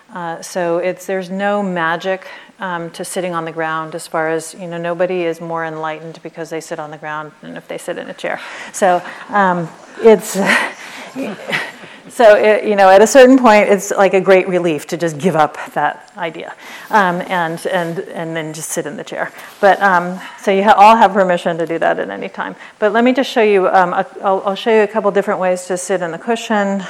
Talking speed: 225 wpm